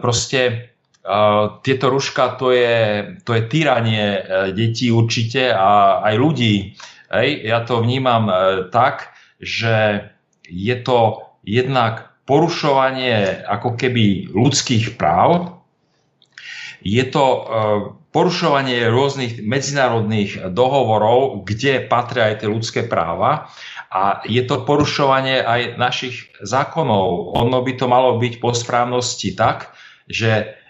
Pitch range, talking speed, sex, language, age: 110-130 Hz, 115 wpm, male, Slovak, 40-59